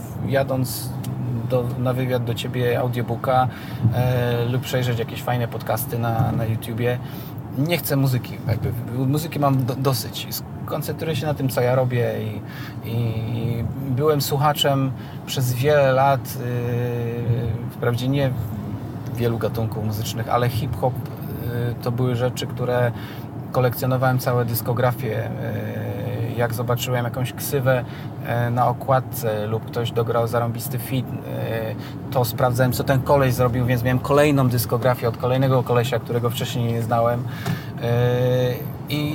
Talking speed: 130 wpm